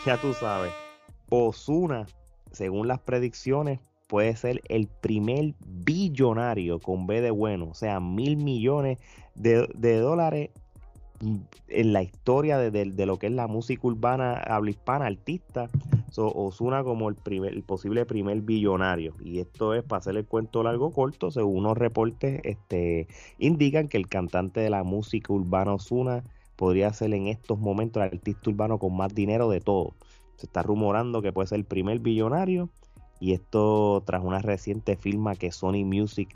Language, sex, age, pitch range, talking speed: Spanish, male, 30-49, 95-120 Hz, 165 wpm